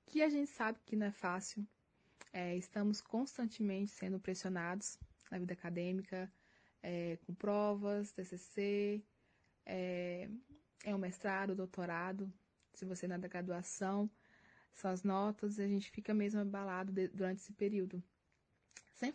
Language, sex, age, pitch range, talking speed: Portuguese, female, 20-39, 185-215 Hz, 145 wpm